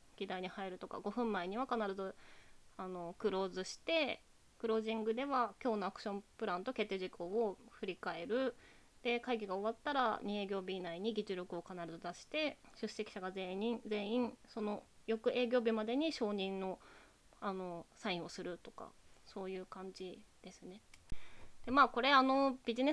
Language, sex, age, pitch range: Japanese, female, 20-39, 190-245 Hz